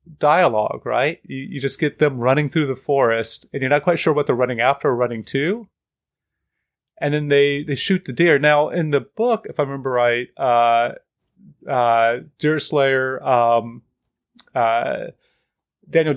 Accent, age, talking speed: American, 30-49, 165 wpm